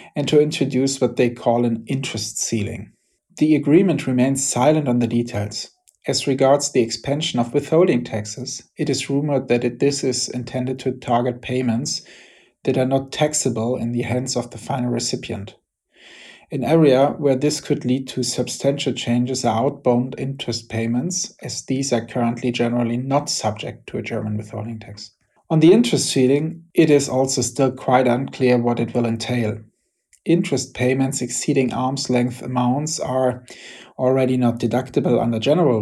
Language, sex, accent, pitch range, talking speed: English, male, German, 120-140 Hz, 160 wpm